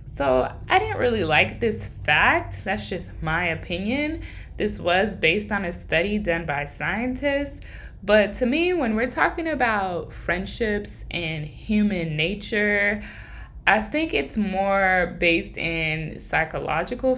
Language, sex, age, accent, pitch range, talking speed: English, female, 20-39, American, 160-230 Hz, 135 wpm